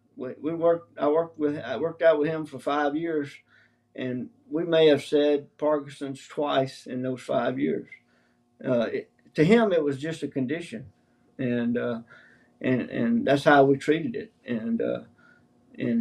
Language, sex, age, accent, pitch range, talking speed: English, male, 50-69, American, 125-155 Hz, 170 wpm